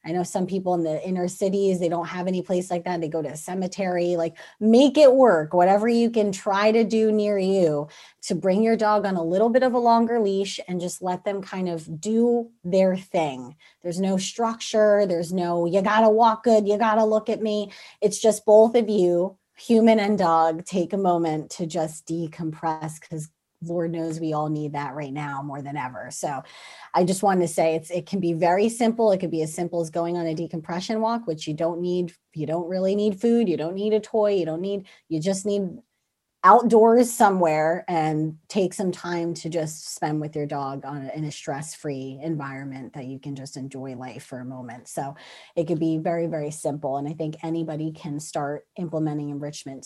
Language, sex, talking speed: English, female, 215 wpm